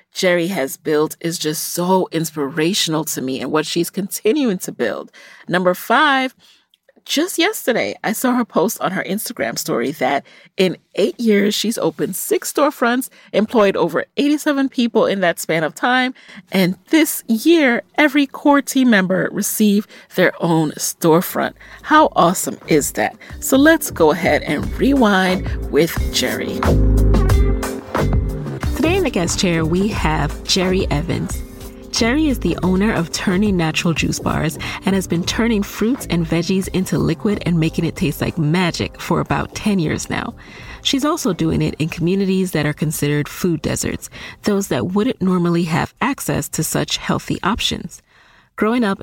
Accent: American